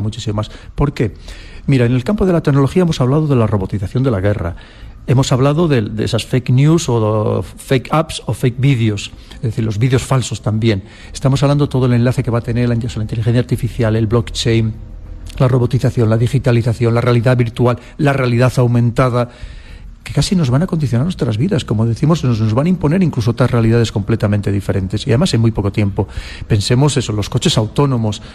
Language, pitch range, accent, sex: Spanish, 110-140 Hz, Spanish, male